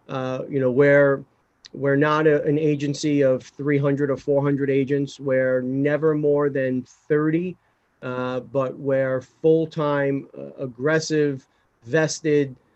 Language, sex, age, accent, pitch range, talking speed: English, male, 40-59, American, 135-150 Hz, 120 wpm